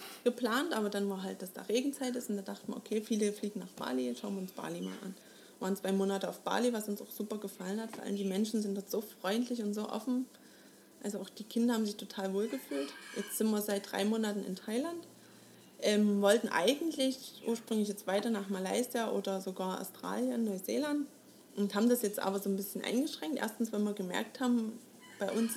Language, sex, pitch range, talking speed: German, female, 200-245 Hz, 215 wpm